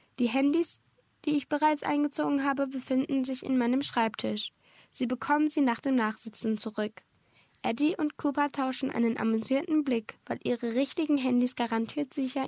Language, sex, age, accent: German, female, 10-29, German